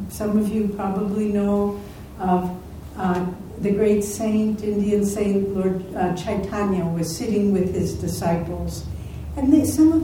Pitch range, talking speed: 165-210 Hz, 135 wpm